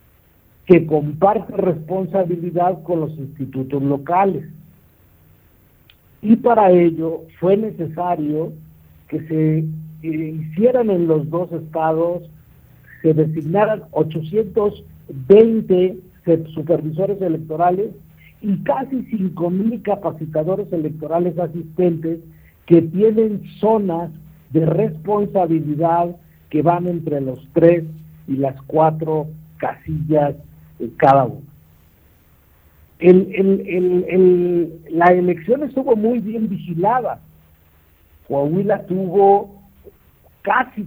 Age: 50-69